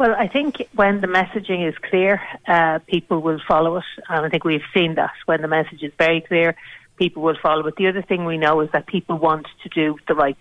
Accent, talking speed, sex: Irish, 240 wpm, female